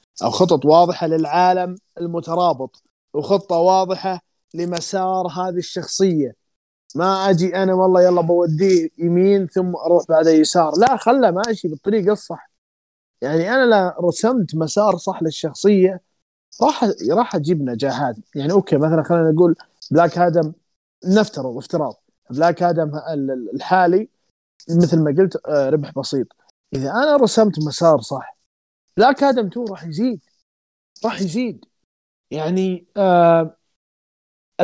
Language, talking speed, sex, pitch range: Arabic, 115 wpm, male, 160-190 Hz